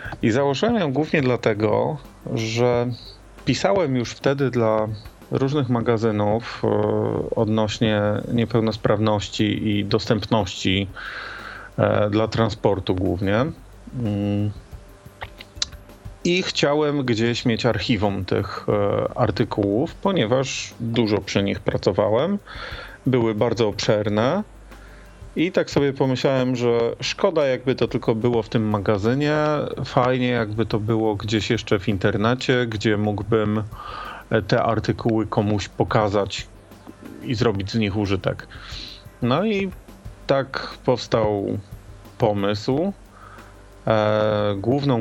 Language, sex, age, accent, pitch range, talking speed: Polish, male, 40-59, native, 105-120 Hz, 95 wpm